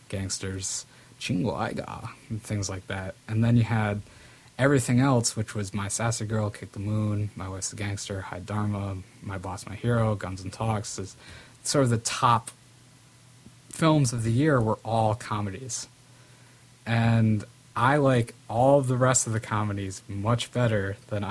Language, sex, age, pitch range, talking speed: English, male, 20-39, 105-125 Hz, 165 wpm